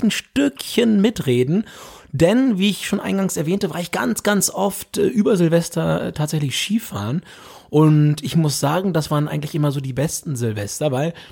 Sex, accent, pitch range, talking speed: male, German, 150-190 Hz, 175 wpm